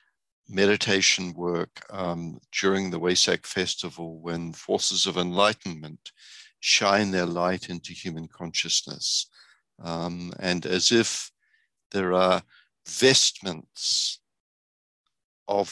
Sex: male